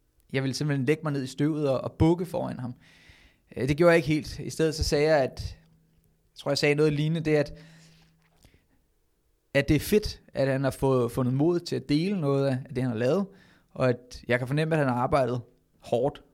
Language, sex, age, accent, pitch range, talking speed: Danish, male, 20-39, native, 125-155 Hz, 220 wpm